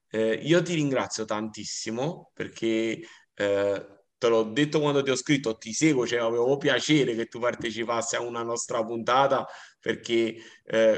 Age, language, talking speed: 30-49, Italian, 150 wpm